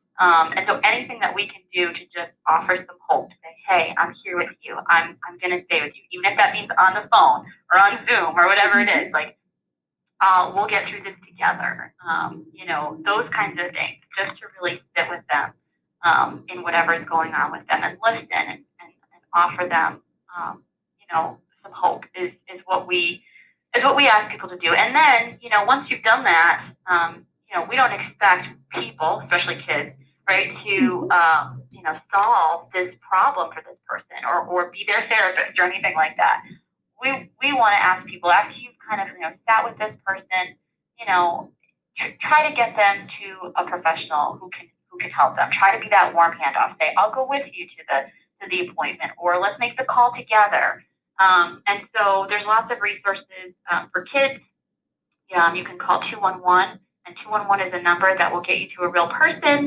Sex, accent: female, American